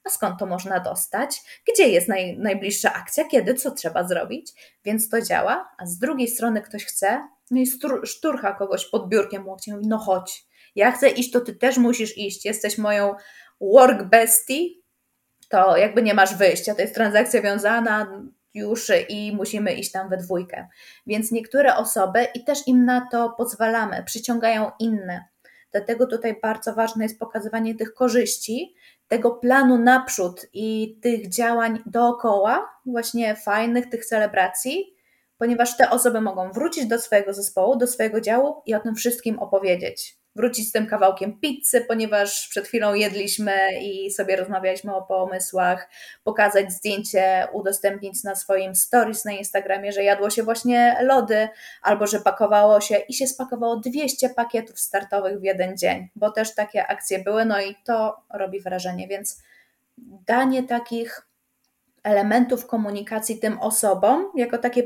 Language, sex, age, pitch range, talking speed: Polish, female, 20-39, 200-245 Hz, 150 wpm